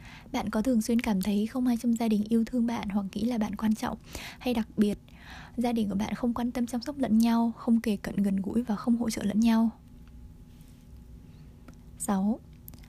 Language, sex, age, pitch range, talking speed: Vietnamese, female, 20-39, 200-230 Hz, 215 wpm